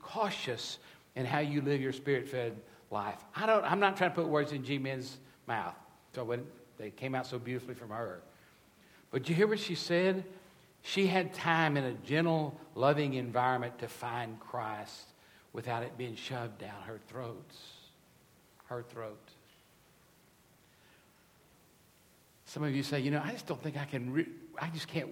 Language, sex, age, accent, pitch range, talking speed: English, male, 60-79, American, 125-170 Hz, 170 wpm